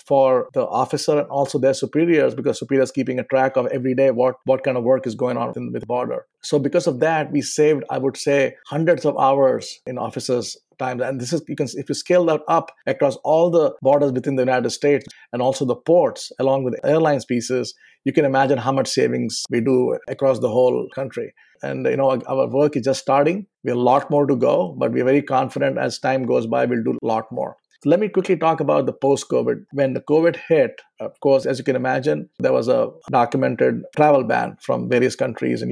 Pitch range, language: 130-150 Hz, English